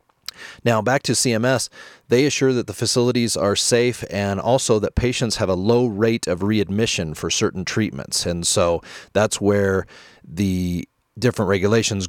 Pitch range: 95-120 Hz